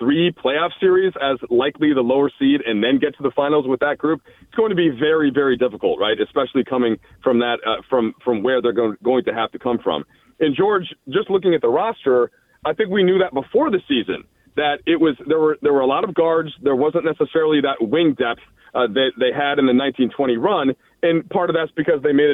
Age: 40-59